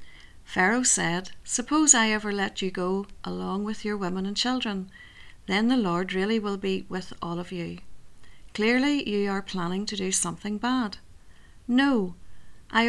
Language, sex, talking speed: English, female, 160 wpm